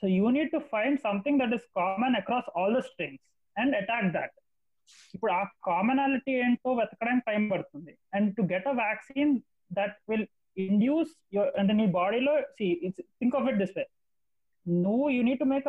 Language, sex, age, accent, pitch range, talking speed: Telugu, male, 30-49, native, 195-265 Hz, 180 wpm